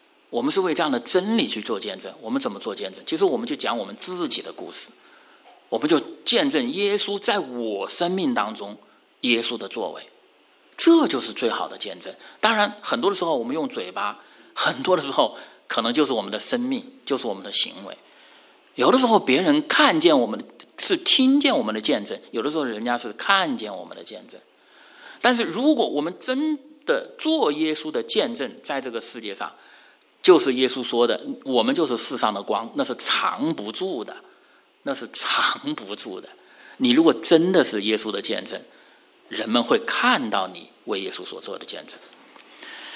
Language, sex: English, male